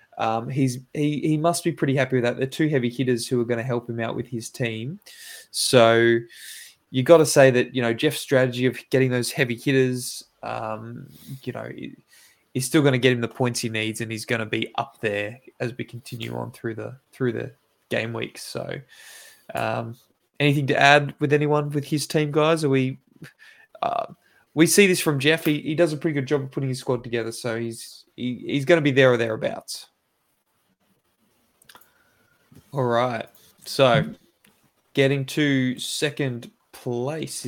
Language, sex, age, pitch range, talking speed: English, male, 20-39, 120-150 Hz, 190 wpm